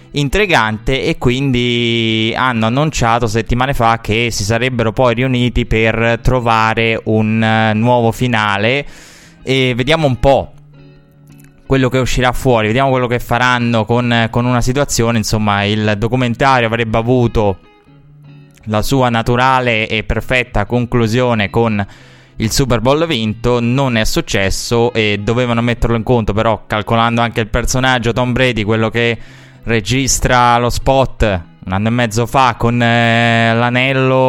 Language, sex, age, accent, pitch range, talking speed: Italian, male, 20-39, native, 110-130 Hz, 135 wpm